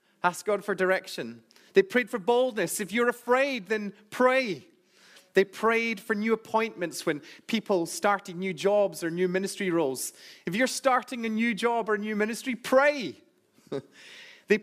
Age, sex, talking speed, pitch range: 30-49, male, 155 wpm, 170-225 Hz